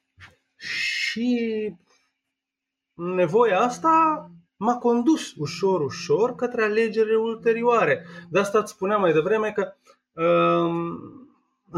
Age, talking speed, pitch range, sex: 20-39, 90 wpm, 135-190 Hz, male